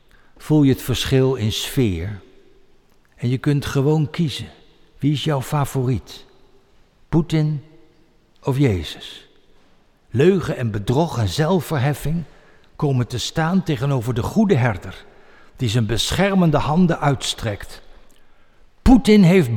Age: 60-79